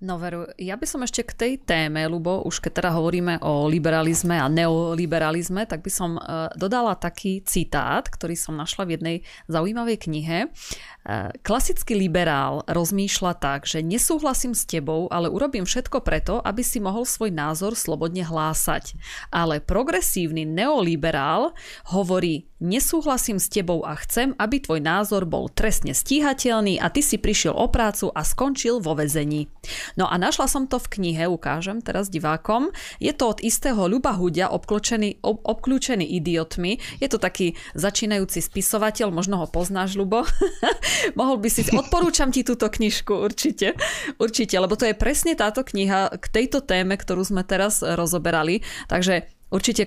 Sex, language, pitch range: female, Slovak, 165-225 Hz